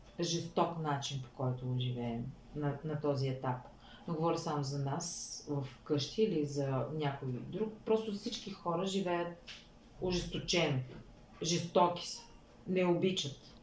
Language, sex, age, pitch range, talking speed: Bulgarian, female, 30-49, 160-200 Hz, 130 wpm